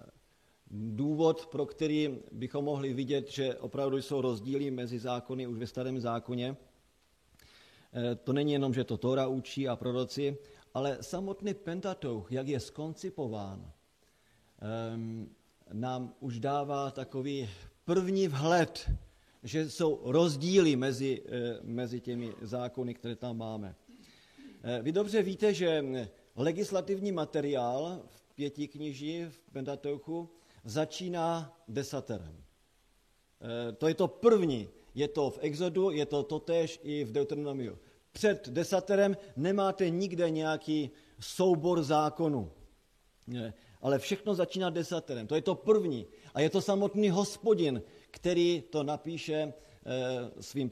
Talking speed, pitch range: 120 wpm, 120-160 Hz